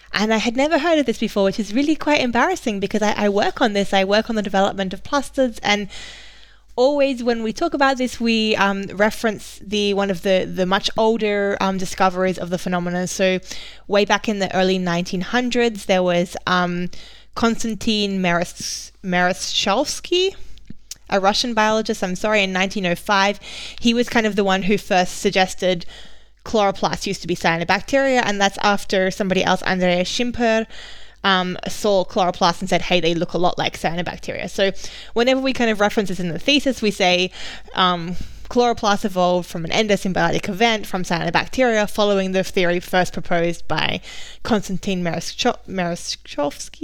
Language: English